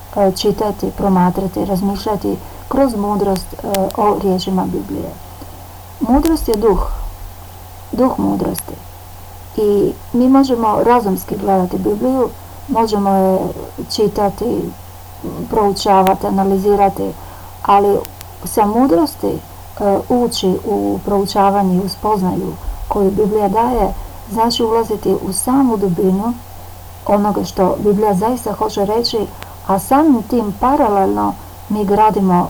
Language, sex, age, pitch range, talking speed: Croatian, female, 50-69, 185-225 Hz, 100 wpm